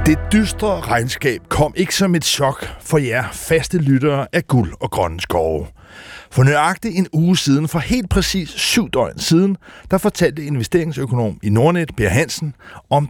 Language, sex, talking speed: Danish, male, 165 wpm